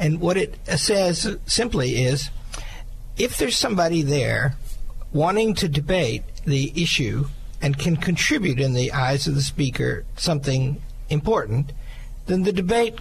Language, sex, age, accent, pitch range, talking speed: English, male, 60-79, American, 130-180 Hz, 135 wpm